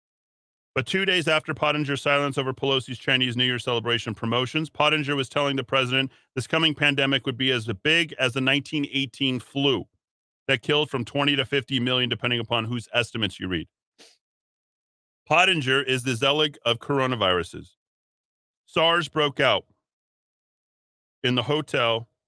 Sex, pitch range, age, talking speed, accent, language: male, 120-145 Hz, 40-59, 145 wpm, American, English